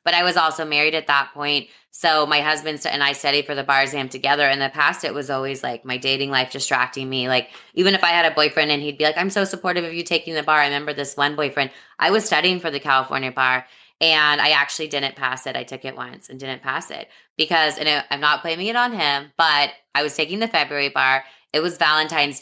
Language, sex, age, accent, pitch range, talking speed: English, female, 20-39, American, 135-160 Hz, 250 wpm